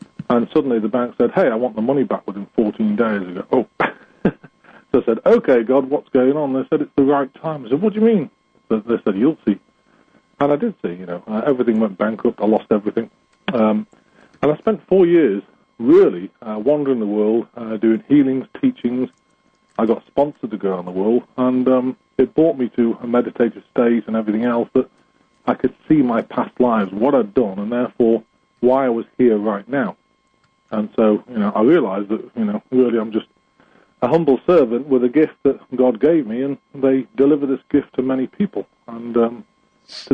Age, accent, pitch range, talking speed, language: 40-59, British, 110-140 Hz, 205 wpm, English